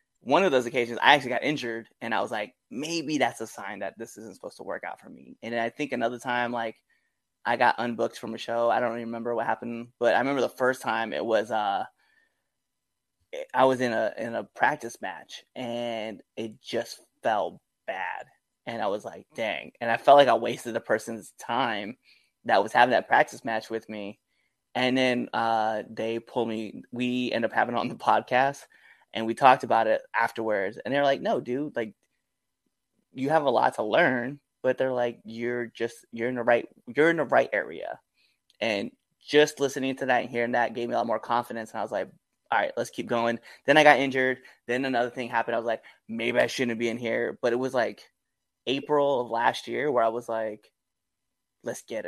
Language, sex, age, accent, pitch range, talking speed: English, male, 20-39, American, 115-130 Hz, 215 wpm